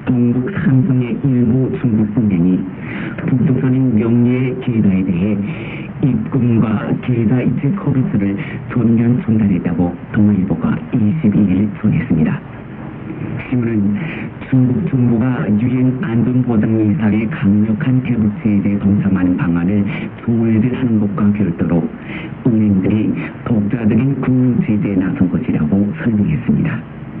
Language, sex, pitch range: Korean, male, 100-125 Hz